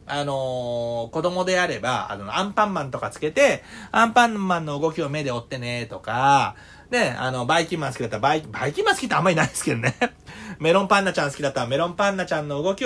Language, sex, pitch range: Japanese, male, 135-215 Hz